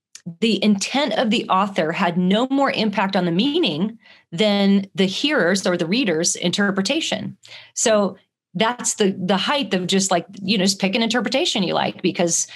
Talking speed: 170 wpm